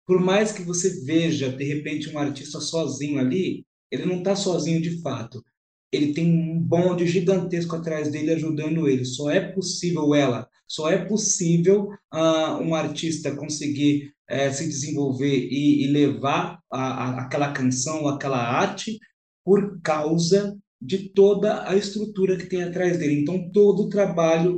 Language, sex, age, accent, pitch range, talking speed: Portuguese, male, 20-39, Brazilian, 145-190 Hz, 155 wpm